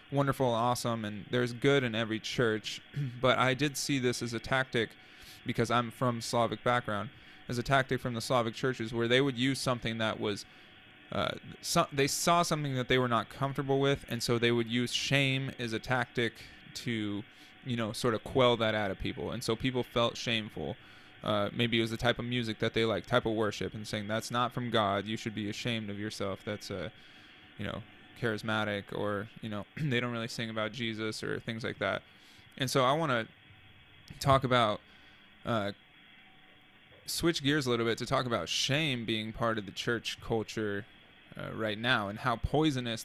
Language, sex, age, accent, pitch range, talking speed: English, male, 20-39, American, 110-125 Hz, 200 wpm